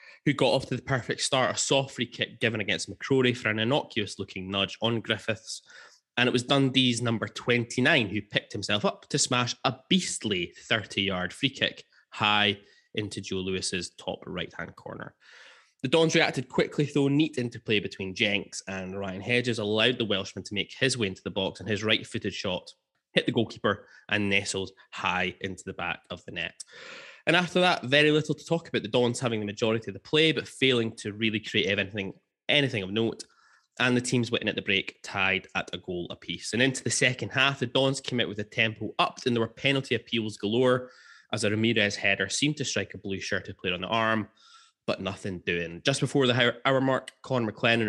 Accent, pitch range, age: British, 100-130 Hz, 20-39